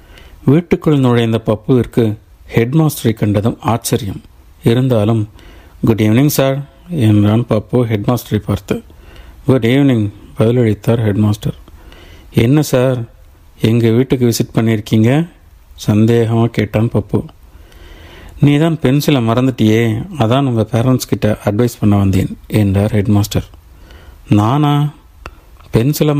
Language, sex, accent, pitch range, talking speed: Tamil, male, native, 100-125 Hz, 95 wpm